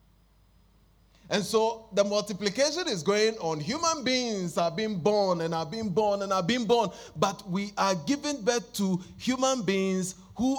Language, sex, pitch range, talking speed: English, male, 130-220 Hz, 165 wpm